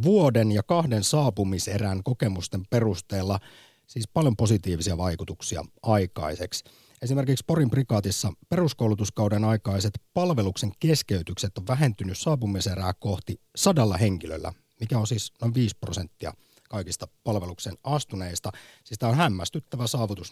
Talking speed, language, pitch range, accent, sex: 110 wpm, Finnish, 100-130 Hz, native, male